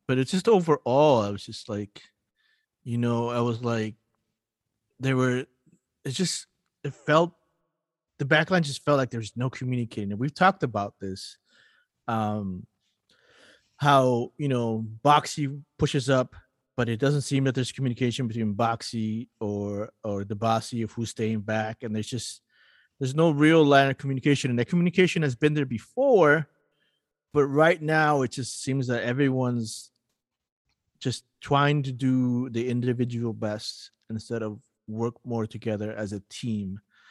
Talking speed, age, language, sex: 155 wpm, 30-49, English, male